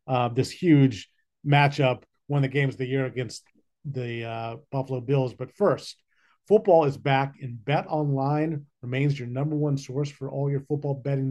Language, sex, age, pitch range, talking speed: English, male, 40-59, 135-155 Hz, 180 wpm